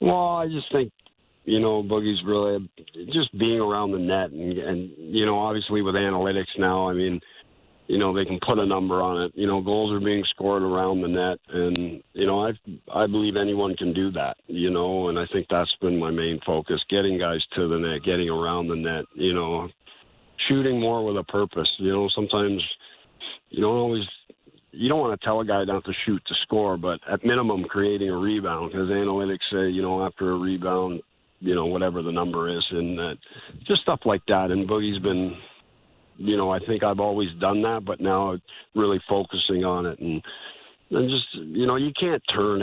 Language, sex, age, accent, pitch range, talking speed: English, male, 50-69, American, 90-105 Hz, 205 wpm